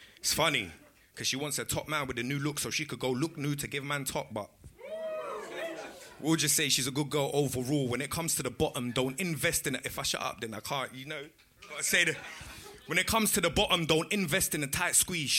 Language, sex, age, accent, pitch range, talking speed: English, male, 20-39, British, 125-155 Hz, 240 wpm